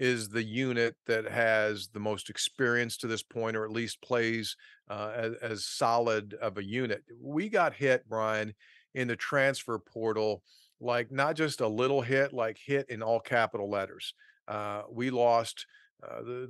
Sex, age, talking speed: male, 40-59, 170 wpm